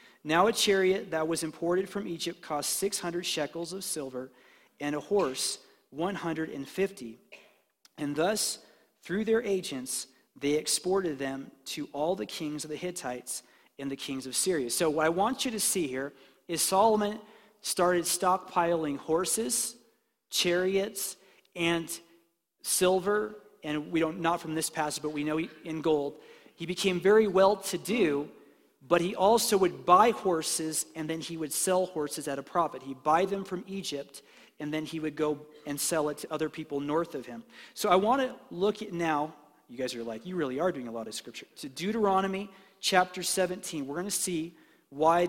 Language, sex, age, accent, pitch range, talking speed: English, male, 40-59, American, 150-190 Hz, 175 wpm